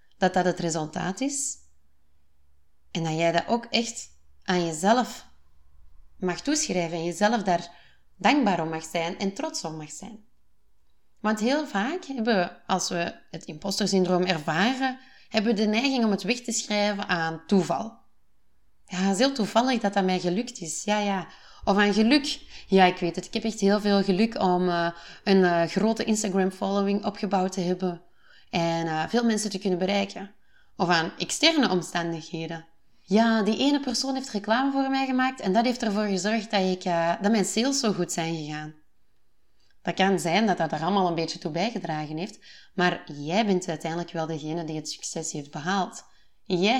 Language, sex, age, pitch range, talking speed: Dutch, female, 20-39, 170-220 Hz, 180 wpm